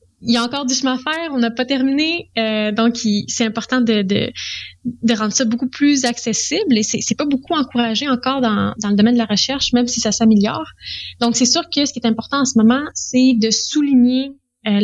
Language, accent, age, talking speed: French, Canadian, 20-39, 235 wpm